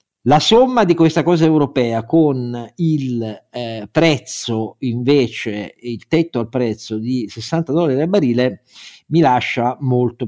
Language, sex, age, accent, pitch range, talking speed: Italian, male, 50-69, native, 120-160 Hz, 135 wpm